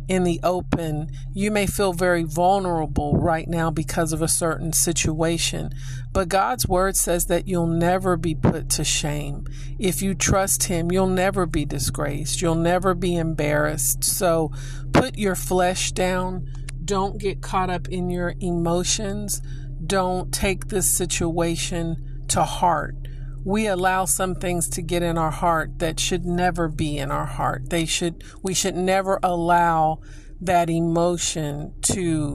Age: 50-69